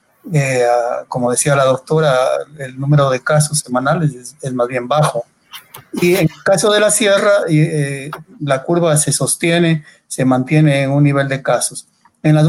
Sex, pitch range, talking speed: male, 135-160 Hz, 185 wpm